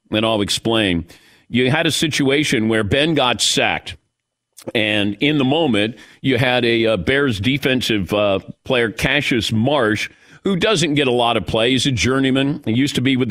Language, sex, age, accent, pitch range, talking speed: English, male, 50-69, American, 120-160 Hz, 170 wpm